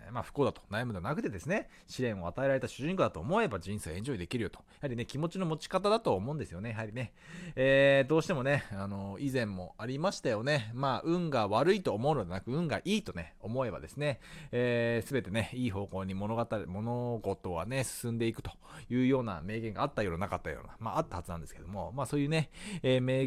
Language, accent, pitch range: Japanese, native, 100-140 Hz